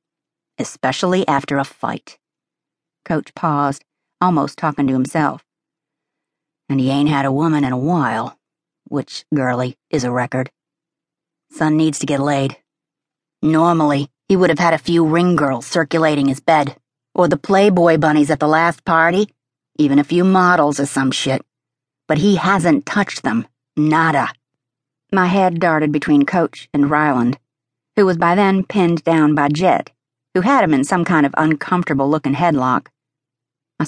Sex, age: female, 50-69